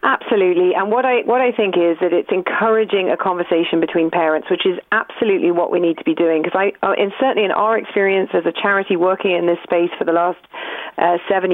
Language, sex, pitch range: English, female, 170-205 Hz